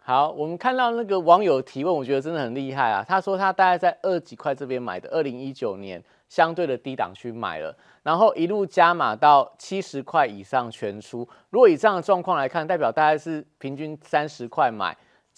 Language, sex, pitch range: Chinese, male, 125-175 Hz